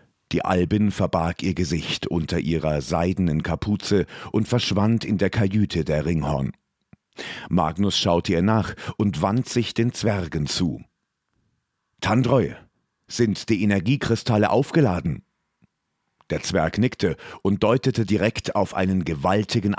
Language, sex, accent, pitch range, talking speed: German, male, German, 85-110 Hz, 120 wpm